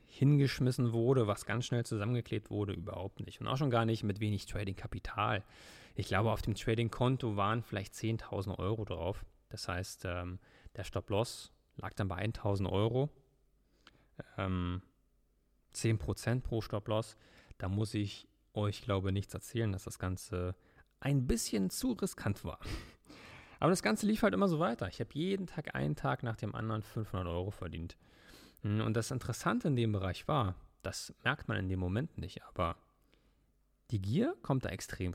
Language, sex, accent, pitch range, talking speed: German, male, German, 95-120 Hz, 165 wpm